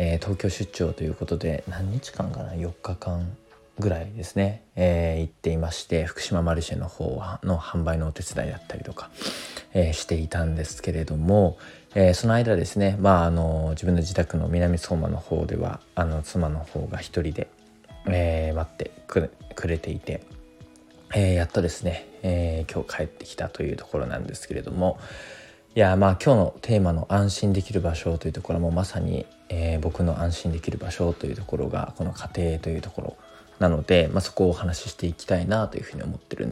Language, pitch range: Japanese, 80-95 Hz